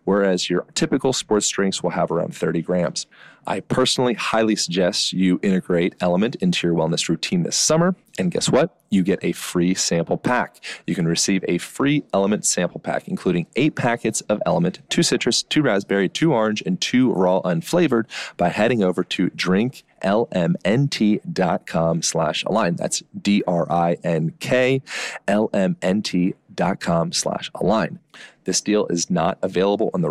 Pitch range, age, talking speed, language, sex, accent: 90-125 Hz, 30-49, 140 wpm, English, male, American